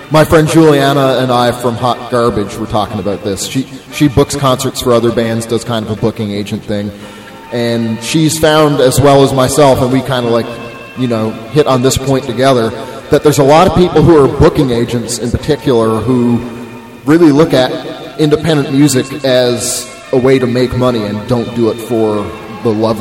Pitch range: 110-130 Hz